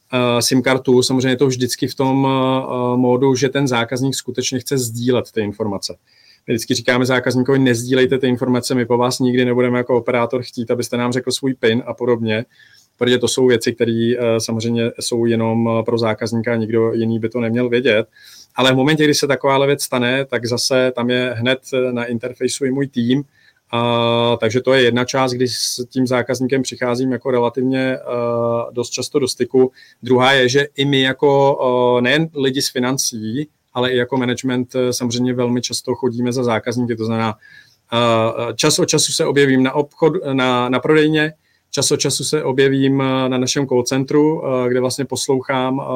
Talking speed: 175 wpm